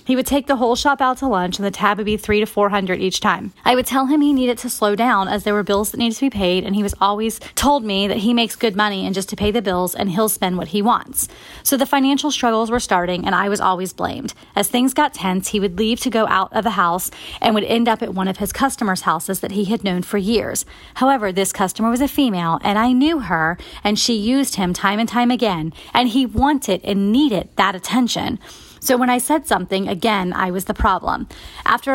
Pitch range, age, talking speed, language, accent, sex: 195-245 Hz, 30-49, 255 wpm, English, American, female